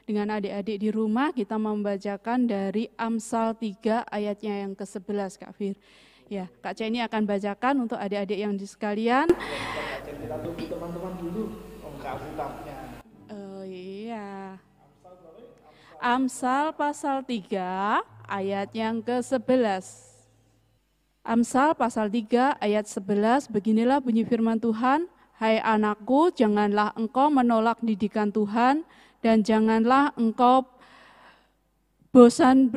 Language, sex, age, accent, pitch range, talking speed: Indonesian, female, 20-39, native, 195-235 Hz, 95 wpm